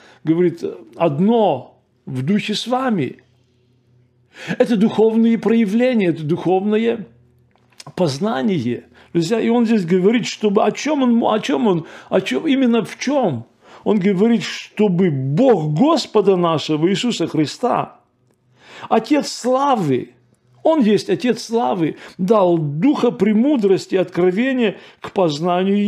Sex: male